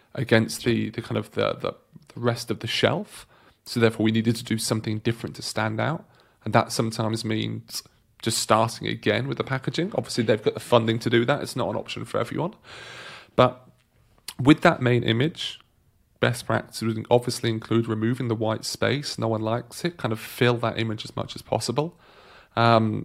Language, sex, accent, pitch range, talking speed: English, male, British, 110-125 Hz, 195 wpm